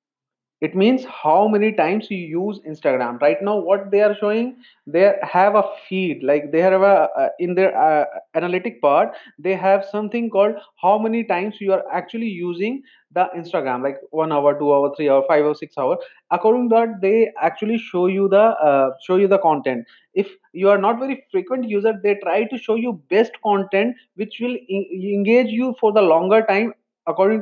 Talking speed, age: 190 wpm, 30-49